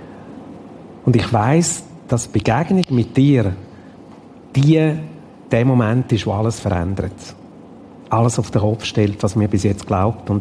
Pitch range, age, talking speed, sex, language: 105-125 Hz, 50-69, 150 wpm, male, German